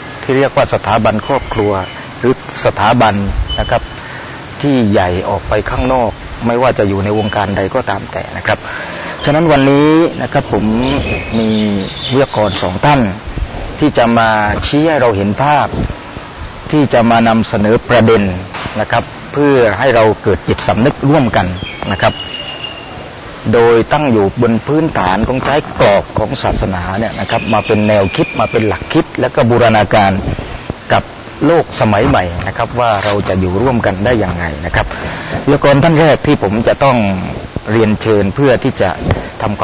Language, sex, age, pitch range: Thai, male, 30-49, 100-130 Hz